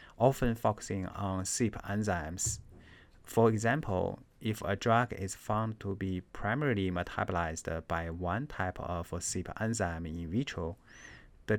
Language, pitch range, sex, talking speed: English, 90-110 Hz, male, 130 wpm